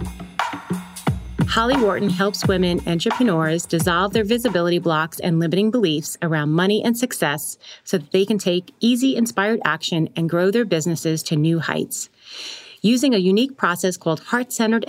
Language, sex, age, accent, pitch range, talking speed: English, female, 30-49, American, 165-210 Hz, 150 wpm